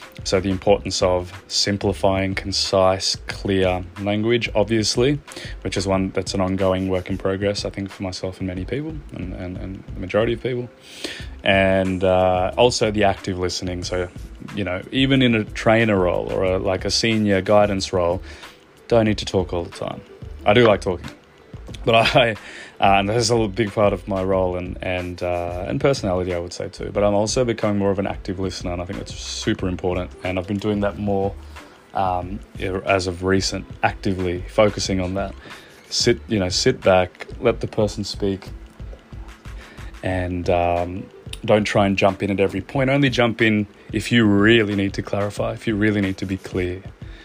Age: 20-39